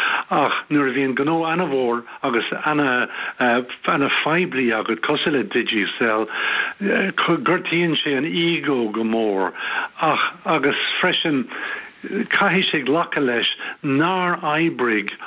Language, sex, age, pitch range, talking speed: English, male, 60-79, 125-150 Hz, 100 wpm